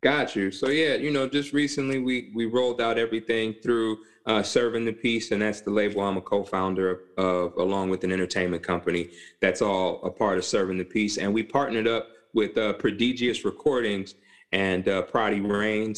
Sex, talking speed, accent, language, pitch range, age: male, 195 wpm, American, English, 105-125 Hz, 30-49